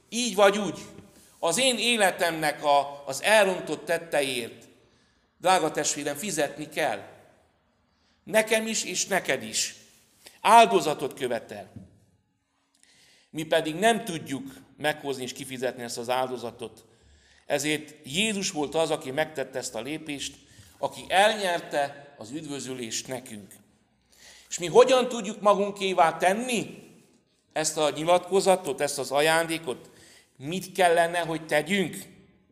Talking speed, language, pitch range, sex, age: 110 wpm, Hungarian, 130-180 Hz, male, 60-79